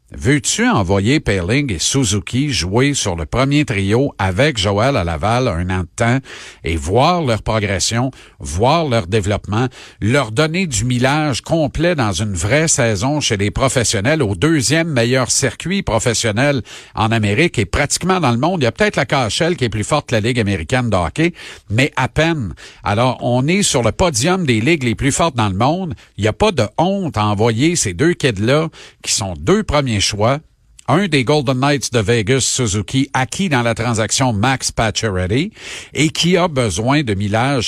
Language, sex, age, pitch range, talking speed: French, male, 50-69, 110-145 Hz, 185 wpm